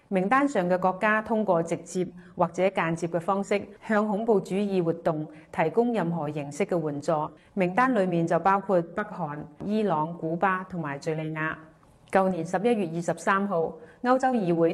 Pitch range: 165-200 Hz